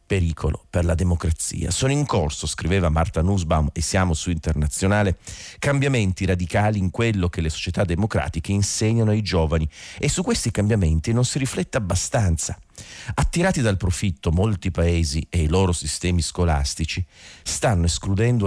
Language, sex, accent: Italian, male, native